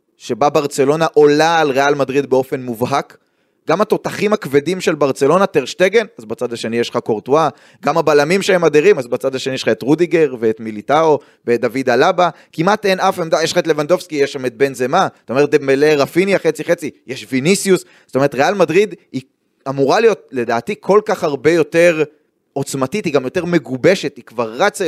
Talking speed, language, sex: 180 wpm, Hebrew, male